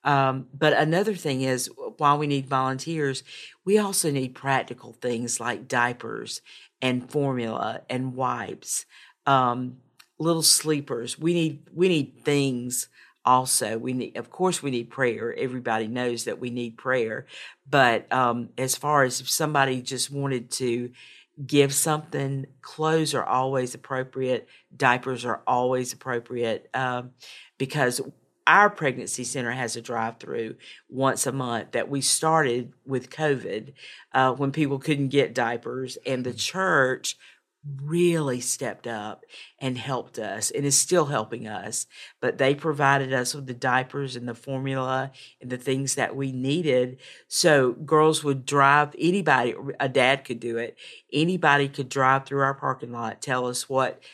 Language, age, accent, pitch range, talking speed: English, 50-69, American, 125-145 Hz, 150 wpm